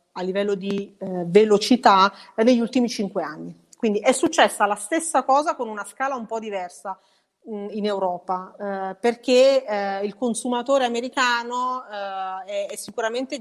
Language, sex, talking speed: Italian, female, 145 wpm